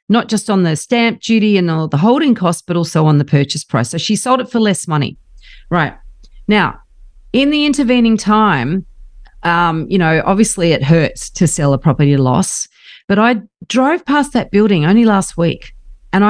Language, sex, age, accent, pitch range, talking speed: English, female, 40-59, Australian, 155-220 Hz, 190 wpm